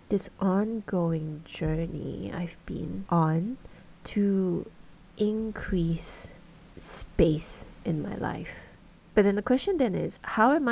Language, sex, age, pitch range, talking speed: English, female, 30-49, 170-210 Hz, 110 wpm